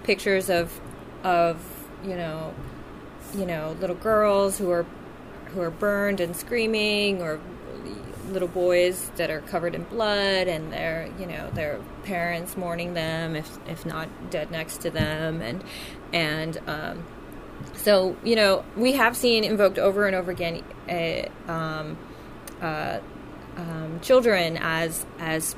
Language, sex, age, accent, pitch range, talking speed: English, female, 20-39, American, 165-205 Hz, 140 wpm